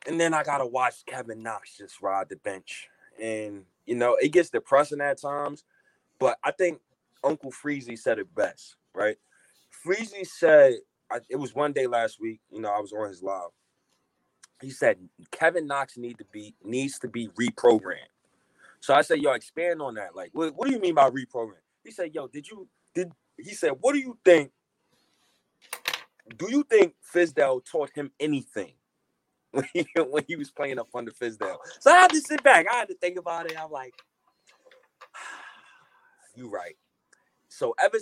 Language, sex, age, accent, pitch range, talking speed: English, male, 20-39, American, 125-195 Hz, 180 wpm